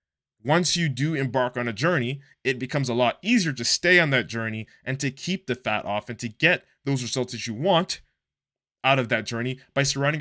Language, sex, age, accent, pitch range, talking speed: English, male, 20-39, American, 110-150 Hz, 215 wpm